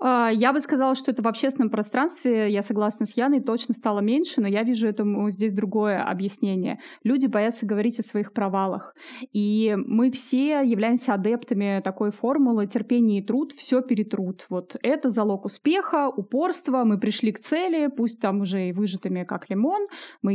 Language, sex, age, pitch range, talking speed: Russian, female, 20-39, 205-255 Hz, 170 wpm